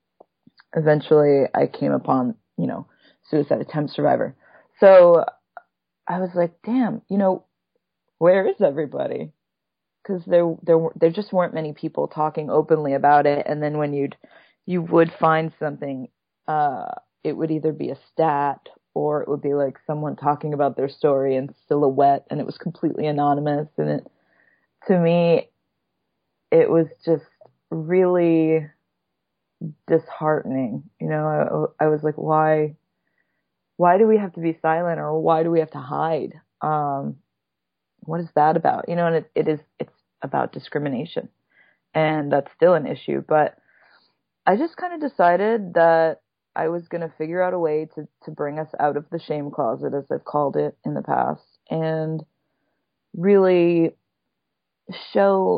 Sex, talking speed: female, 160 wpm